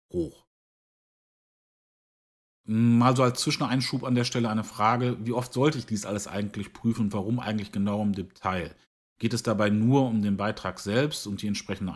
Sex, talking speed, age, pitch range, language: male, 175 wpm, 40-59, 100-120 Hz, English